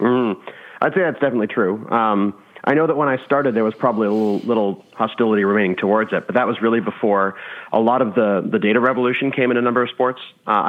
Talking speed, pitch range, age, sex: 235 wpm, 100-120 Hz, 30-49, male